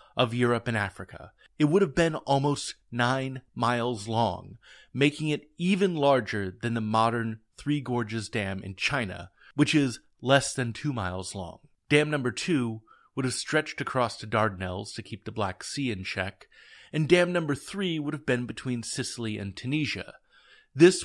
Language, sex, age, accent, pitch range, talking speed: English, male, 30-49, American, 110-145 Hz, 170 wpm